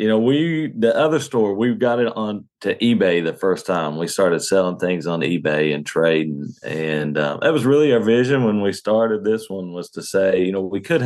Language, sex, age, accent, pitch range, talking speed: English, male, 40-59, American, 90-115 Hz, 230 wpm